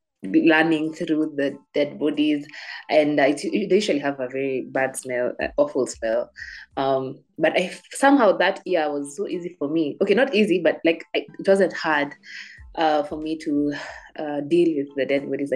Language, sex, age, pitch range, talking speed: English, female, 20-39, 145-185 Hz, 185 wpm